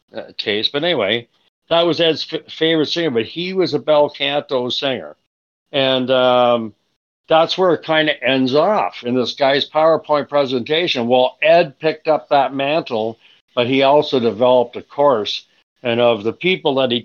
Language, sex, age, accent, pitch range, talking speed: English, male, 60-79, American, 120-155 Hz, 175 wpm